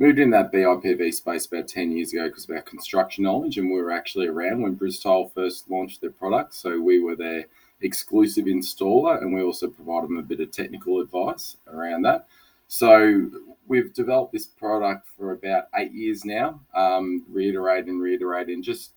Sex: male